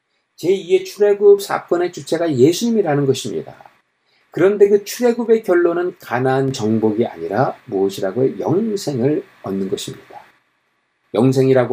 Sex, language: male, Korean